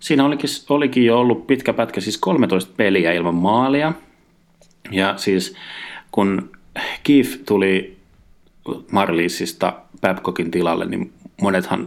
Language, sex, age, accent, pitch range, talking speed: Finnish, male, 30-49, native, 90-110 Hz, 110 wpm